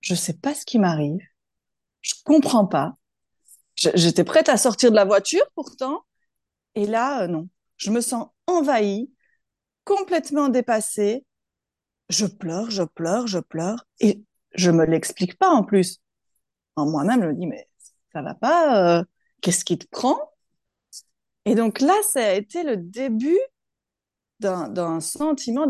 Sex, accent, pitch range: female, French, 190-280 Hz